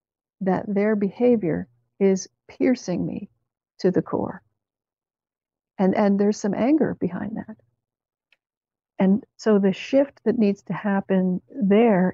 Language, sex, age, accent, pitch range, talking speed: English, female, 60-79, American, 180-215 Hz, 125 wpm